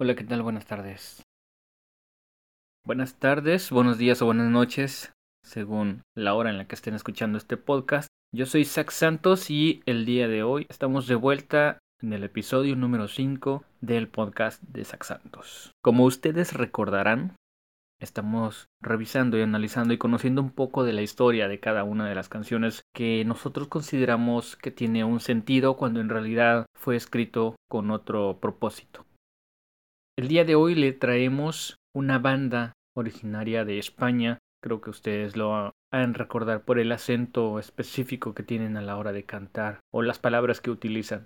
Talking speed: 165 wpm